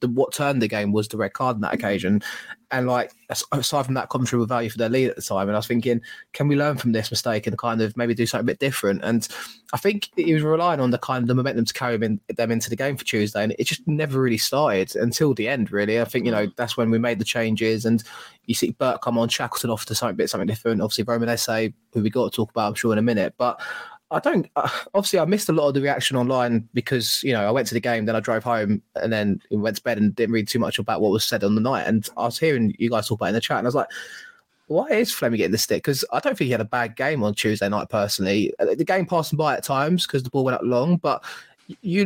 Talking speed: 290 wpm